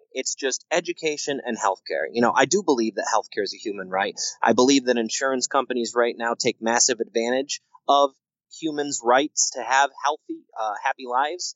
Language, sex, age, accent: English, male, 30-49, American